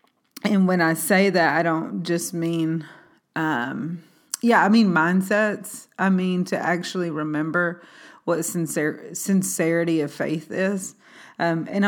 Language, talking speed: English, 135 wpm